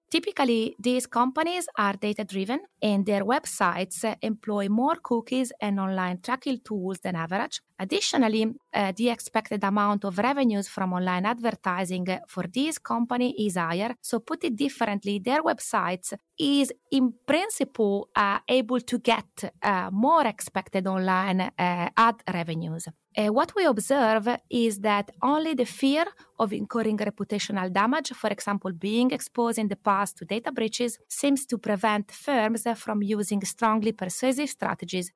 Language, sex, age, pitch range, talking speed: Italian, female, 20-39, 200-250 Hz, 145 wpm